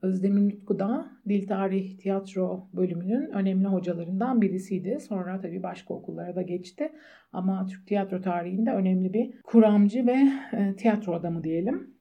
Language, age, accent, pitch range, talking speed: Turkish, 50-69, native, 190-235 Hz, 135 wpm